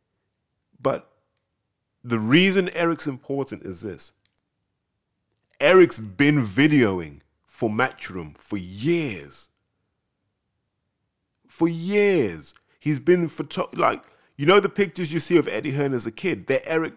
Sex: male